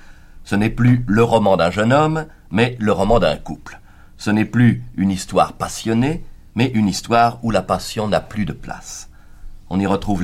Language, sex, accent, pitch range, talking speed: French, male, French, 85-115 Hz, 190 wpm